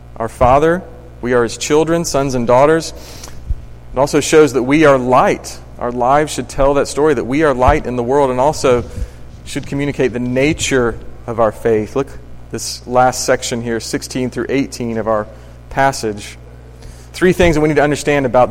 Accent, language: American, English